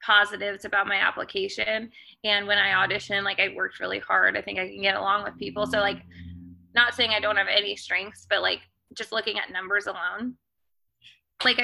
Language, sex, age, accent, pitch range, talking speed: English, female, 20-39, American, 190-225 Hz, 195 wpm